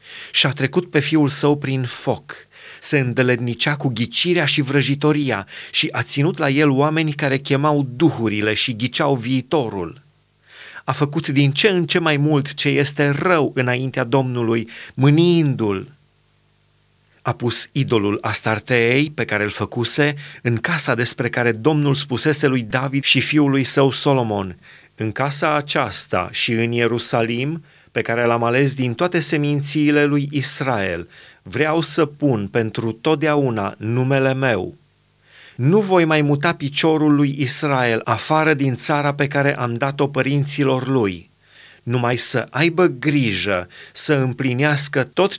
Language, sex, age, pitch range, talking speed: Romanian, male, 30-49, 125-150 Hz, 140 wpm